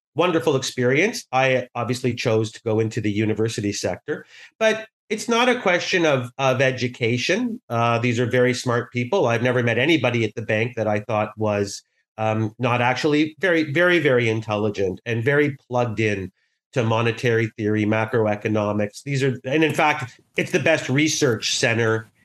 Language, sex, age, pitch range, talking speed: English, male, 40-59, 120-165 Hz, 165 wpm